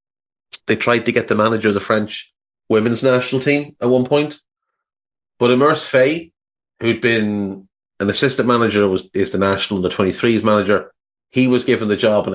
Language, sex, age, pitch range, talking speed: English, male, 30-49, 100-120 Hz, 175 wpm